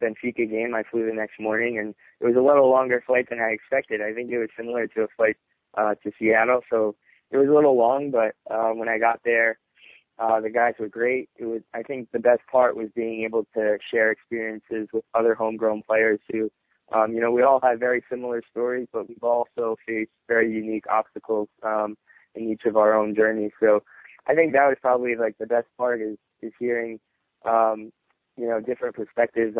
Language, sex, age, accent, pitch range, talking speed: English, male, 20-39, American, 110-120 Hz, 210 wpm